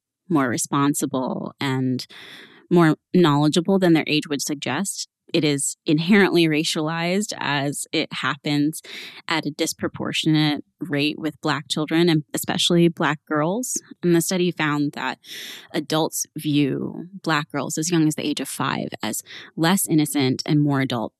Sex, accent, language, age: female, American, English, 20-39